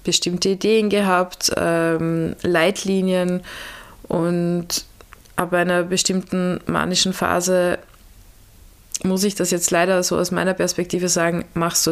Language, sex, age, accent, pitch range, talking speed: German, female, 20-39, German, 165-185 Hz, 115 wpm